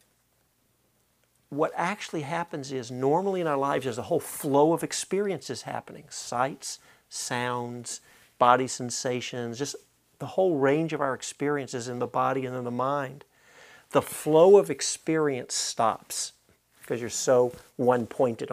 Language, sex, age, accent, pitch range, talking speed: English, male, 50-69, American, 125-160 Hz, 135 wpm